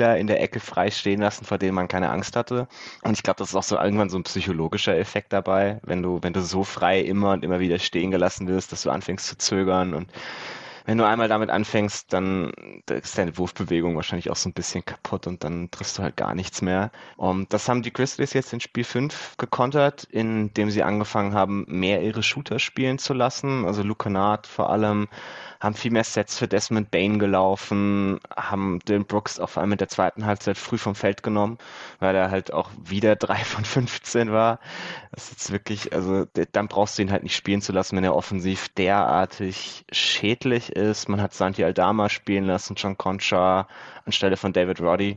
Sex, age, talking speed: male, 20-39, 205 wpm